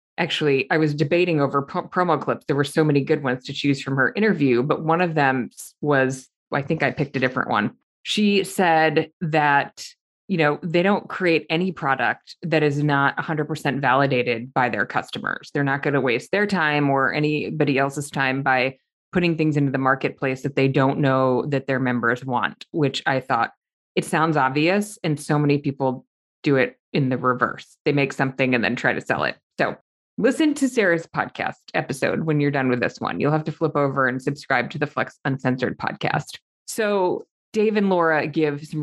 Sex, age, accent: female, 20-39, American